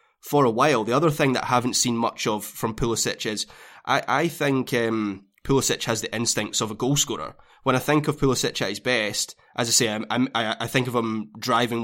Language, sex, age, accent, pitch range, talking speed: English, male, 20-39, British, 110-130 Hz, 240 wpm